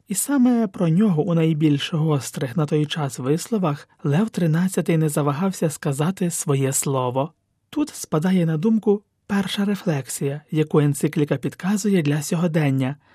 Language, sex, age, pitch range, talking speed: Ukrainian, male, 30-49, 150-195 Hz, 130 wpm